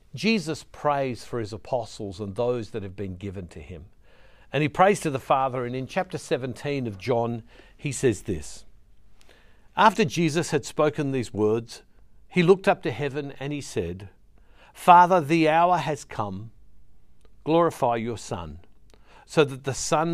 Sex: male